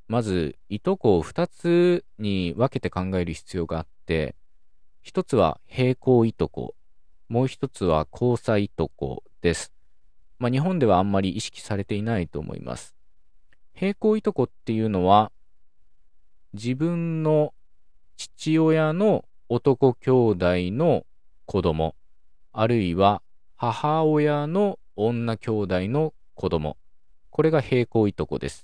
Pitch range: 85-140 Hz